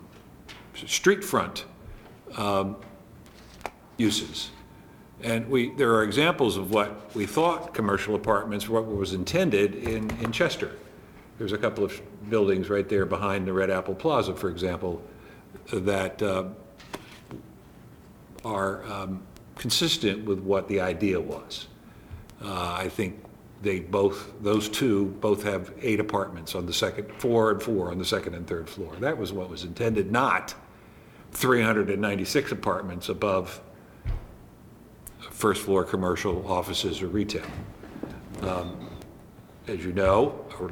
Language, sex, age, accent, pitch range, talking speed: English, male, 60-79, American, 95-110 Hz, 130 wpm